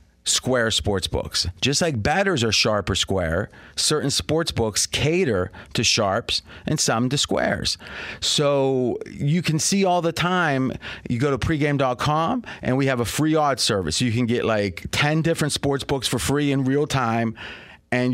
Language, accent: English, American